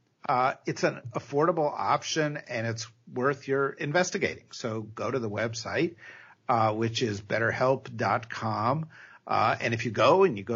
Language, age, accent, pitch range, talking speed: English, 50-69, American, 110-135 Hz, 155 wpm